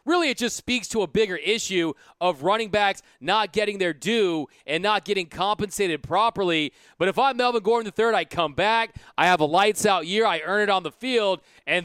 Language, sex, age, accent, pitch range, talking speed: English, male, 30-49, American, 170-220 Hz, 210 wpm